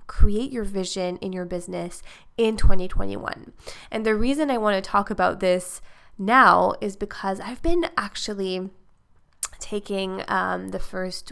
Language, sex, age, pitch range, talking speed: English, female, 20-39, 185-220 Hz, 145 wpm